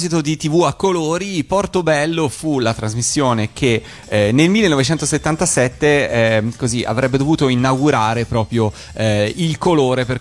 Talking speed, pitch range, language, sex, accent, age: 130 wpm, 110-145 Hz, Italian, male, native, 30-49